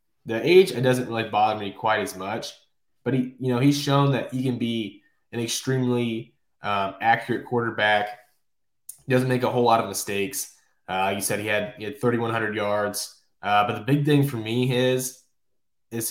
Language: English